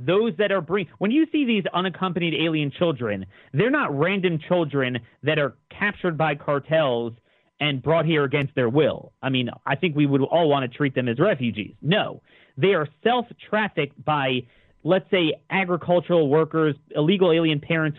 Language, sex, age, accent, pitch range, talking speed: English, male, 40-59, American, 145-185 Hz, 165 wpm